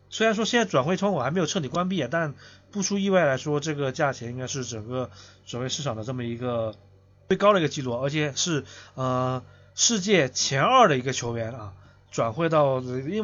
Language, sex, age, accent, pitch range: Chinese, male, 20-39, native, 115-160 Hz